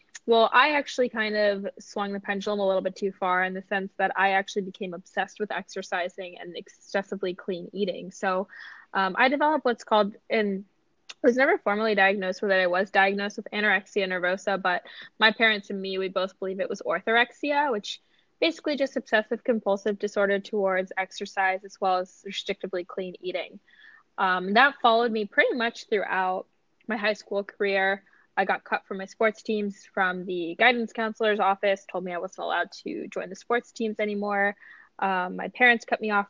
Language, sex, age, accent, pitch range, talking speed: English, female, 10-29, American, 190-225 Hz, 185 wpm